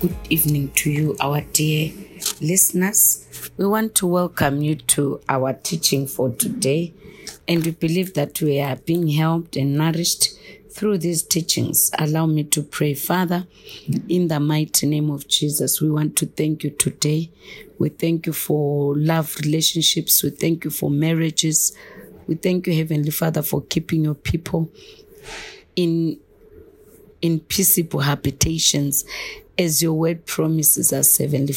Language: English